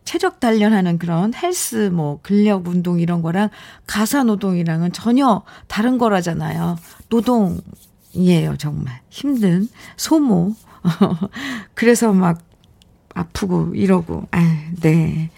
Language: Korean